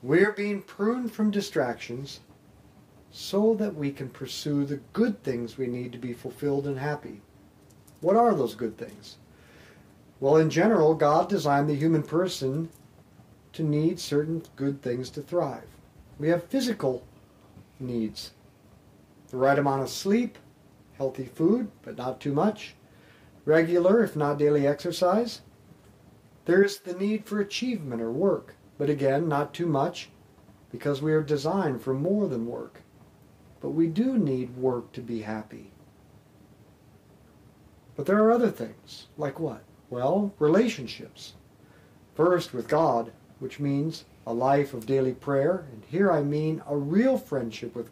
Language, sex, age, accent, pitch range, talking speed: English, male, 50-69, American, 125-175 Hz, 145 wpm